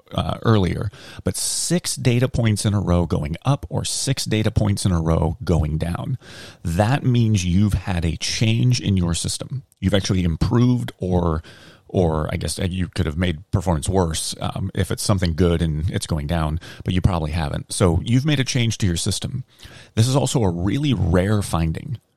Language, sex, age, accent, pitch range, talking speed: English, male, 30-49, American, 85-115 Hz, 190 wpm